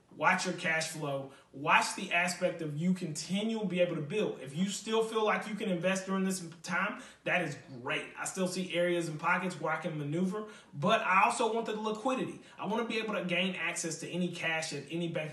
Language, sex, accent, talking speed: English, male, American, 225 wpm